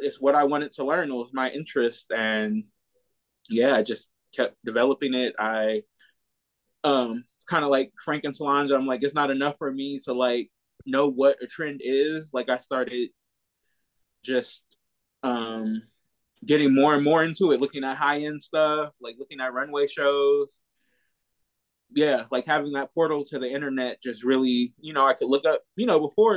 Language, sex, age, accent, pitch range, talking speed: English, male, 20-39, American, 120-145 Hz, 180 wpm